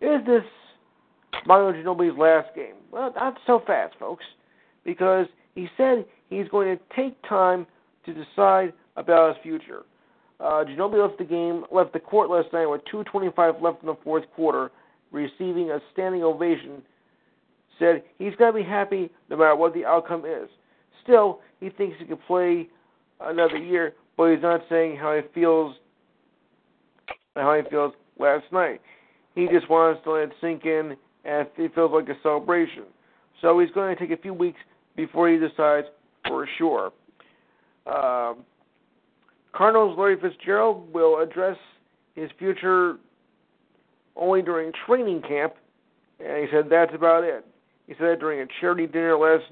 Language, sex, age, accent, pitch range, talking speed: English, male, 50-69, American, 160-190 Hz, 160 wpm